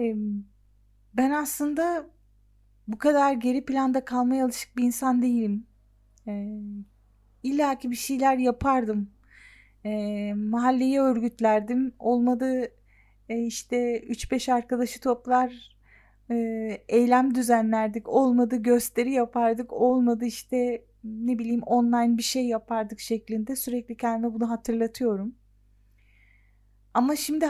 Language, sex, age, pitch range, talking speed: Turkish, female, 40-59, 215-250 Hz, 95 wpm